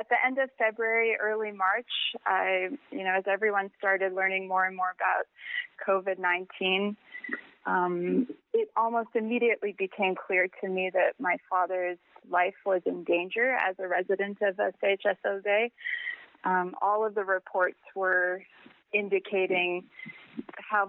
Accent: American